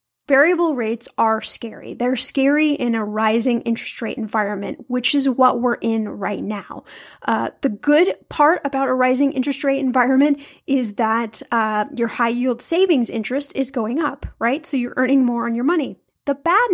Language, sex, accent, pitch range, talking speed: English, female, American, 235-285 Hz, 180 wpm